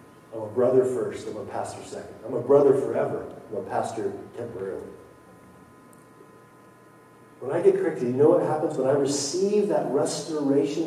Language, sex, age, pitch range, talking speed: English, male, 40-59, 130-215 Hz, 160 wpm